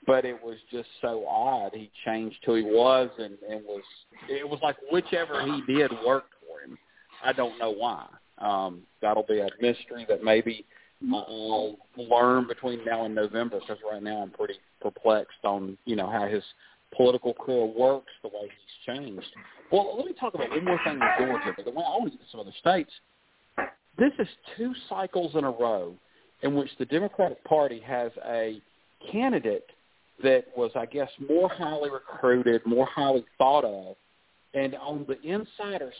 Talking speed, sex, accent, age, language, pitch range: 175 wpm, male, American, 40-59, English, 115-160 Hz